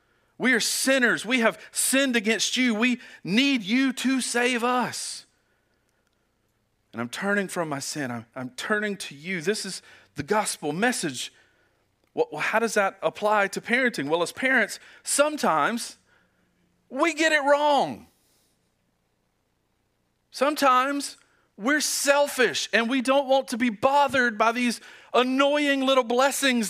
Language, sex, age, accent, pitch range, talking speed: English, male, 40-59, American, 180-265 Hz, 135 wpm